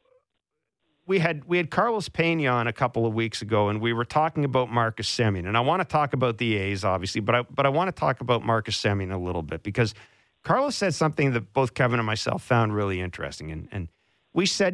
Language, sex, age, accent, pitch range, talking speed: English, male, 50-69, American, 110-160 Hz, 230 wpm